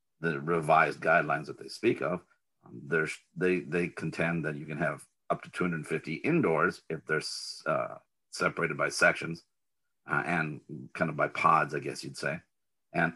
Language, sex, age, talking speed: English, male, 50-69, 165 wpm